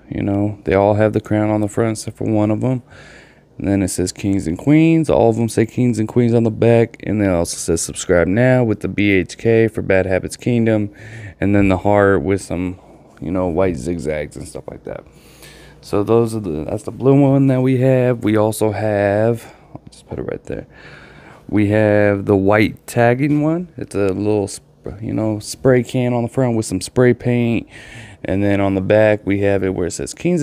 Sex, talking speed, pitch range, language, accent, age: male, 215 wpm, 95-120 Hz, English, American, 20-39